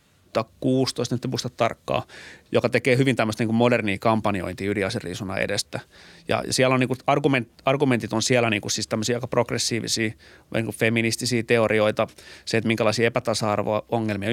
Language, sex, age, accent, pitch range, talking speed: Finnish, male, 30-49, native, 105-120 Hz, 155 wpm